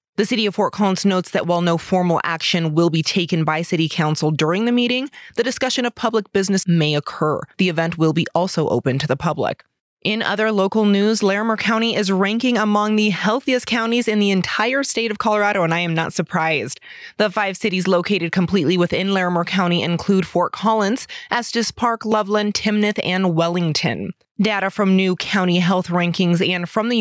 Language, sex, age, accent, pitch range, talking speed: English, female, 20-39, American, 170-210 Hz, 190 wpm